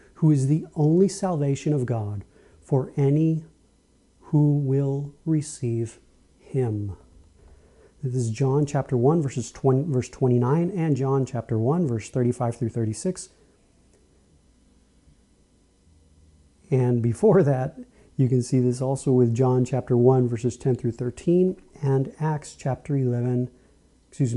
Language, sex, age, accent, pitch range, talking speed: English, male, 40-59, American, 115-150 Hz, 120 wpm